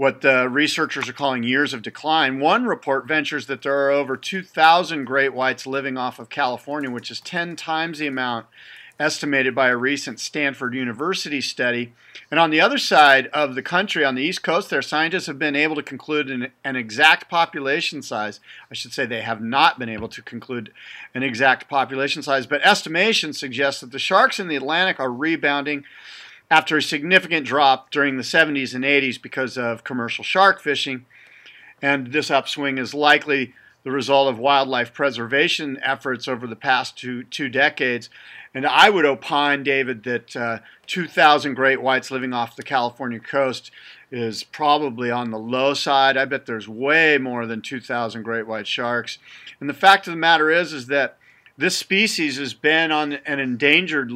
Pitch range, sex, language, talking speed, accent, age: 125-150 Hz, male, English, 180 wpm, American, 40-59